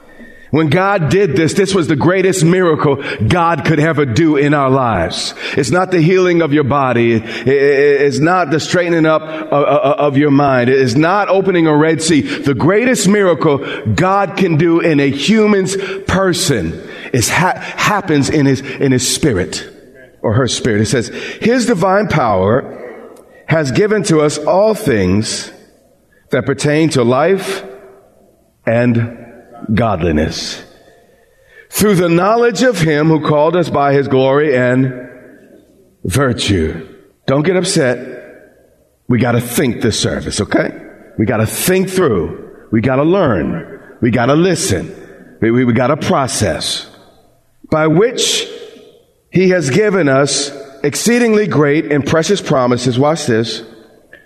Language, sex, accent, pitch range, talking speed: English, male, American, 130-185 Hz, 145 wpm